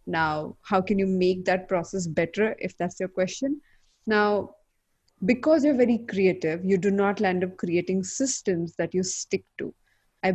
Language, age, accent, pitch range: English, 20-39, Indian, 175-205 Hz